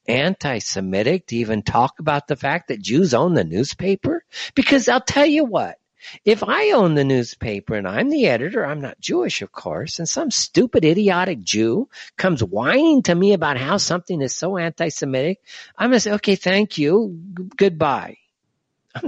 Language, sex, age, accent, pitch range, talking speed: English, male, 50-69, American, 140-210 Hz, 175 wpm